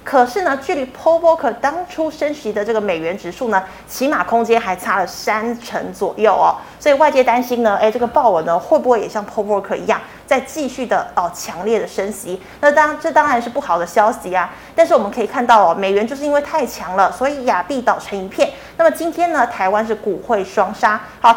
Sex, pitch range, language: female, 200-275 Hz, Chinese